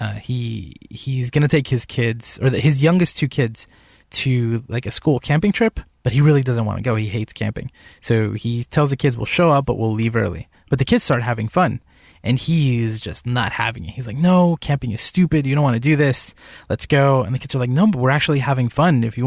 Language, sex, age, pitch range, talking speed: English, male, 20-39, 115-140 Hz, 250 wpm